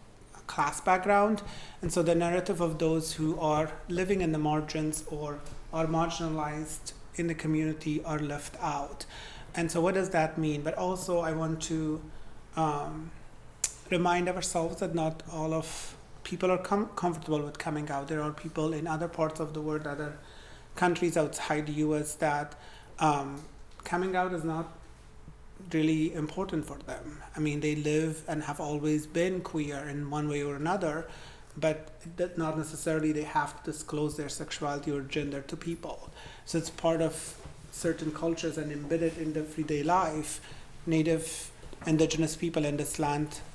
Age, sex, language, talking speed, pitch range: 30-49, male, English, 160 wpm, 150-165 Hz